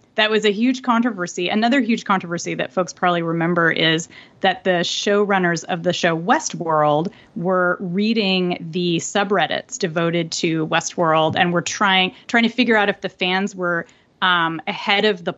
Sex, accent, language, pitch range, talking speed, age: female, American, English, 180-225 Hz, 165 wpm, 30-49